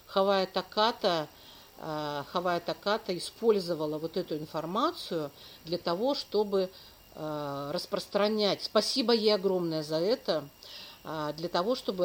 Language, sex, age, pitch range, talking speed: Russian, female, 50-69, 150-200 Hz, 90 wpm